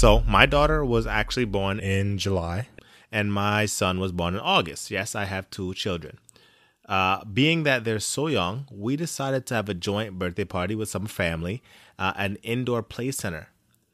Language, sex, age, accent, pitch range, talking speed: English, male, 20-39, American, 95-110 Hz, 180 wpm